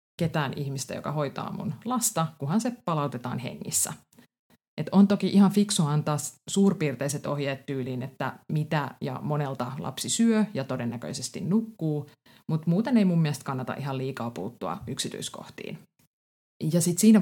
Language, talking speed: Finnish, 145 wpm